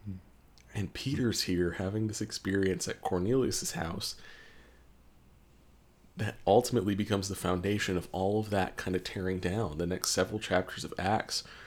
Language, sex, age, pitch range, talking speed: English, male, 30-49, 85-105 Hz, 145 wpm